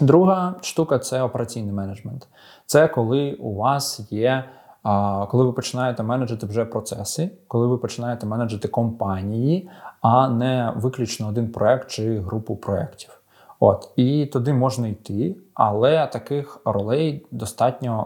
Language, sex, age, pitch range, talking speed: Ukrainian, male, 20-39, 110-130 Hz, 130 wpm